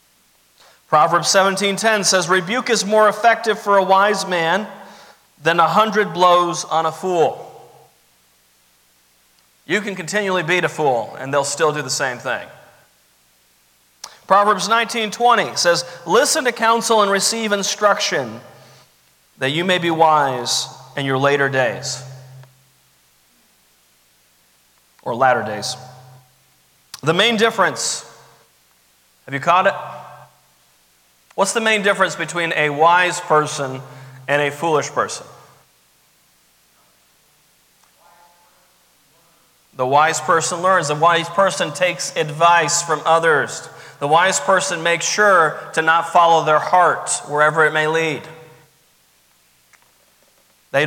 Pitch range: 135-195 Hz